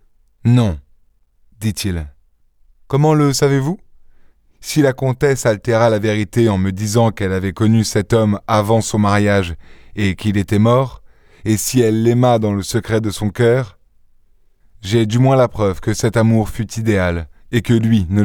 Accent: French